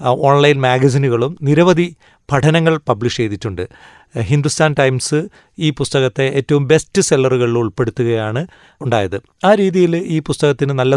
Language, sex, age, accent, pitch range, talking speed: Malayalam, male, 30-49, native, 120-145 Hz, 110 wpm